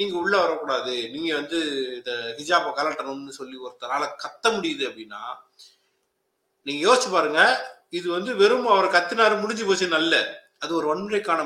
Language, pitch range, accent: Tamil, 160-260 Hz, native